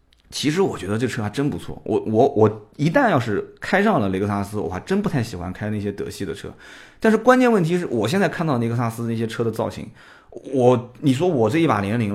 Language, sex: Chinese, male